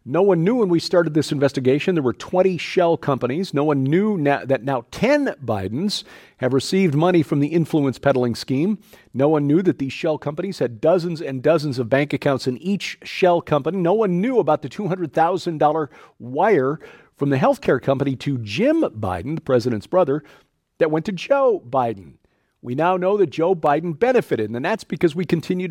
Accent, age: American, 40-59